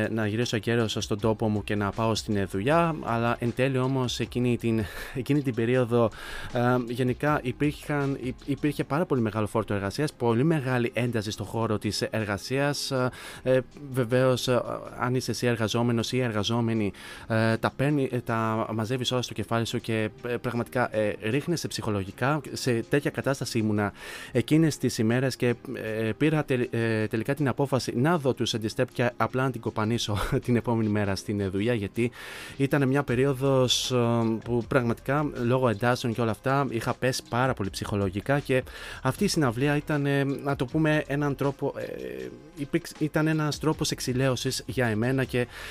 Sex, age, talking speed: male, 20-39, 160 wpm